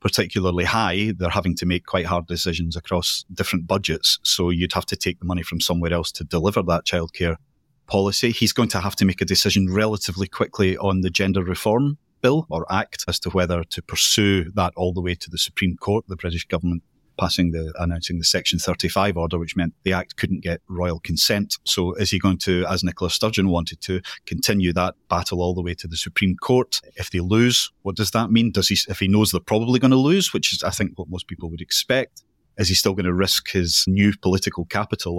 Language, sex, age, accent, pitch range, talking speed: English, male, 30-49, British, 90-105 Hz, 225 wpm